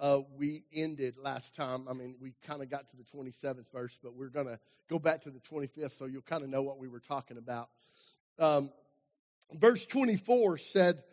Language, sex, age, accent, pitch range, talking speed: English, male, 50-69, American, 145-195 Hz, 205 wpm